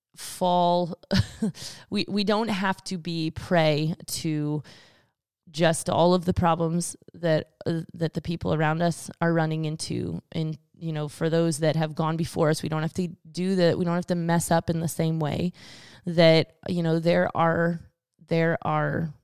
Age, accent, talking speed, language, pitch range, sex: 20-39, American, 180 wpm, English, 155-175 Hz, female